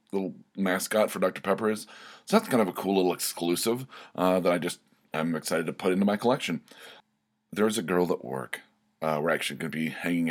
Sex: male